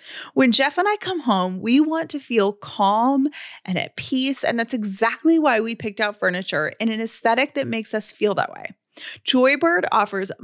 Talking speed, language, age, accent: 190 wpm, English, 30-49, American